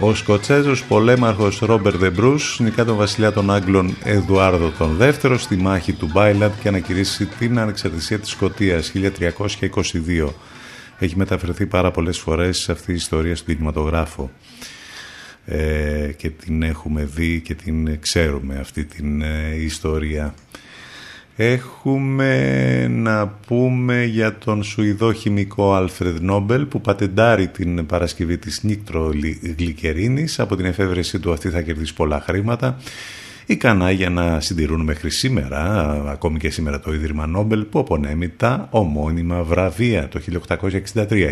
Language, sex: Greek, male